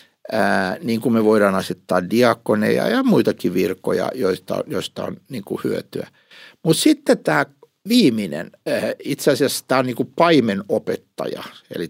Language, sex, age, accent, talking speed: Finnish, male, 60-79, native, 145 wpm